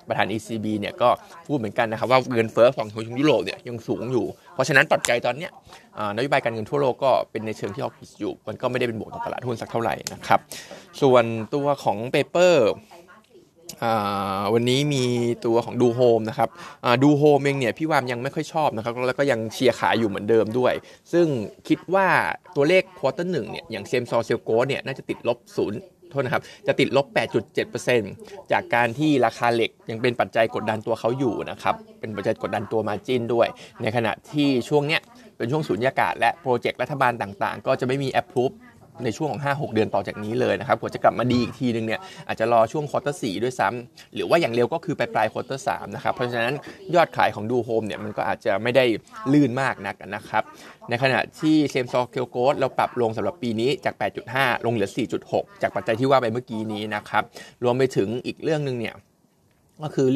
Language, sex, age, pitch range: Thai, male, 20-39, 110-140 Hz